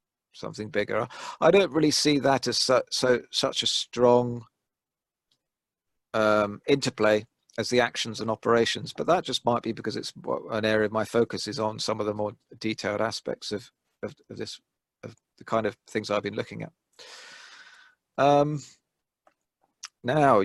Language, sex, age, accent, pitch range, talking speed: English, male, 40-59, British, 110-135 Hz, 160 wpm